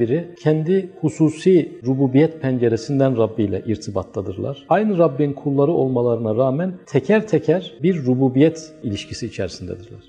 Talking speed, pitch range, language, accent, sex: 105 wpm, 125-170 Hz, Turkish, native, male